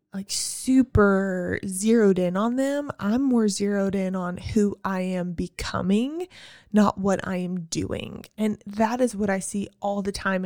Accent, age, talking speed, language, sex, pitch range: American, 20-39, 165 wpm, English, female, 185-215 Hz